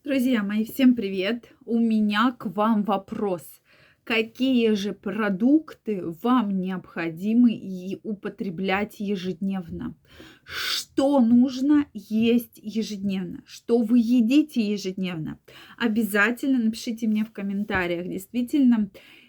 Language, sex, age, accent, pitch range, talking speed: Russian, female, 20-39, native, 190-240 Hz, 95 wpm